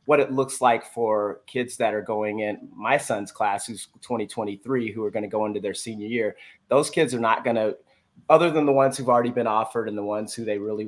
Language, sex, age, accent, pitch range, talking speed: English, male, 30-49, American, 110-140 Hz, 230 wpm